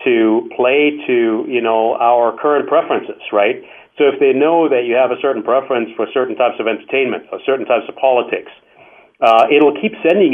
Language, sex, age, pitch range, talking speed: English, male, 50-69, 115-145 Hz, 190 wpm